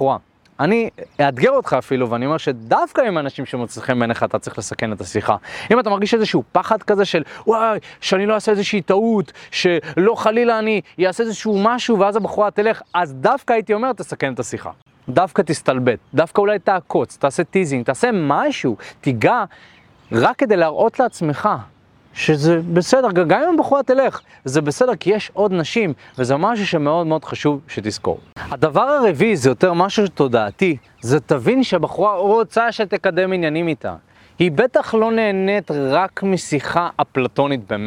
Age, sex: 30-49, male